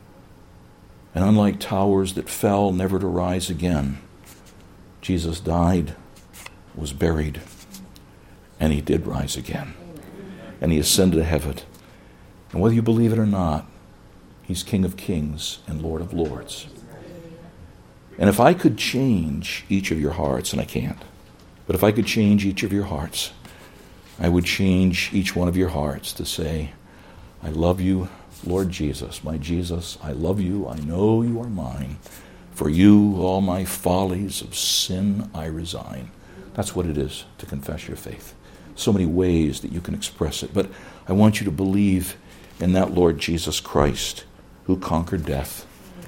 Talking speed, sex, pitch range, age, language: 160 wpm, male, 80-100 Hz, 60-79, English